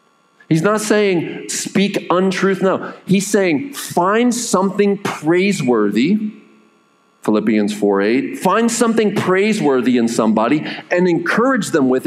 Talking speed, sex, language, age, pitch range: 110 wpm, male, English, 40-59, 140-205 Hz